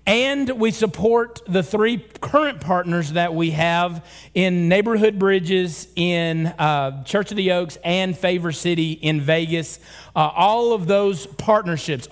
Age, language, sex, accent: 40-59, English, male, American